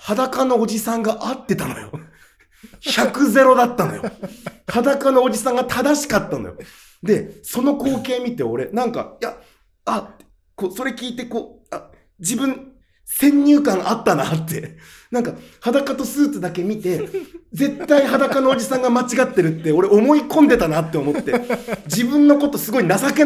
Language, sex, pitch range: Japanese, male, 190-275 Hz